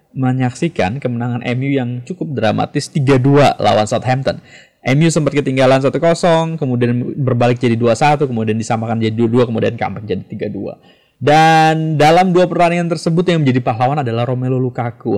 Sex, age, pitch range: male, 20-39, 115-150 Hz